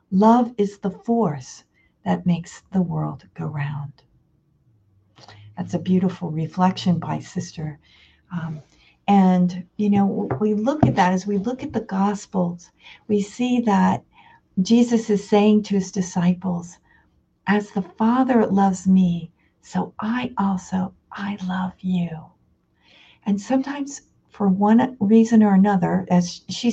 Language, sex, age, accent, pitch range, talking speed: English, female, 50-69, American, 180-220 Hz, 130 wpm